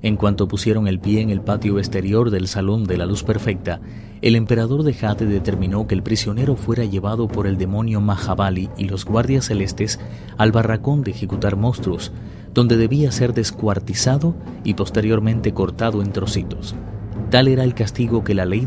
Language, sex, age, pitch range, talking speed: Spanish, male, 30-49, 95-115 Hz, 175 wpm